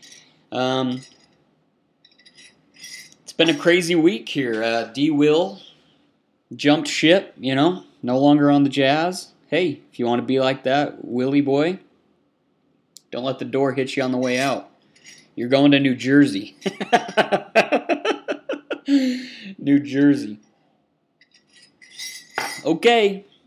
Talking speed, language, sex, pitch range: 120 wpm, English, male, 115-145 Hz